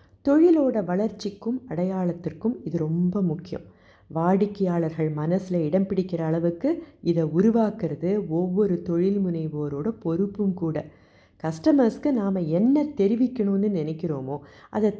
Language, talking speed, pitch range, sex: Tamil, 95 wpm, 160-220 Hz, female